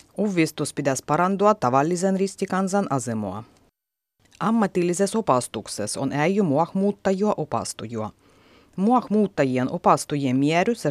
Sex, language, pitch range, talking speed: female, Finnish, 135-200 Hz, 90 wpm